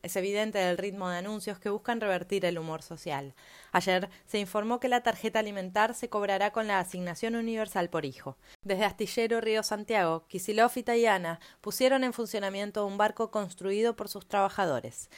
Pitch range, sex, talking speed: 180-225 Hz, female, 170 wpm